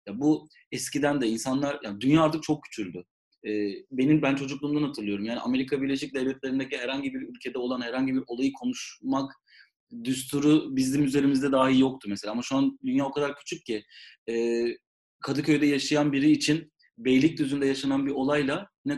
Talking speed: 160 wpm